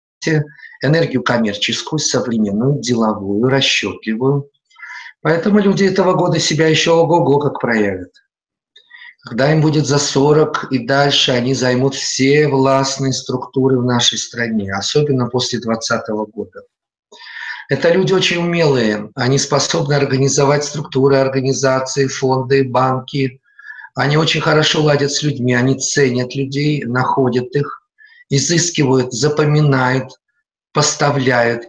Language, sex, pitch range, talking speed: Russian, male, 125-155 Hz, 110 wpm